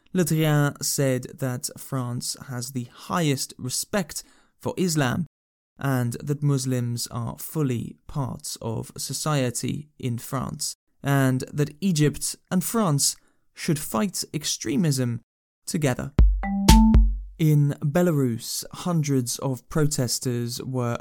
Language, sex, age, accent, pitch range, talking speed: English, male, 20-39, British, 125-155 Hz, 100 wpm